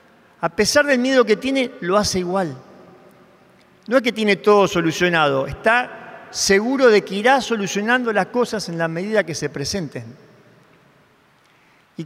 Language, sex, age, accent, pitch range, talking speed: Spanish, male, 40-59, Argentinian, 175-230 Hz, 150 wpm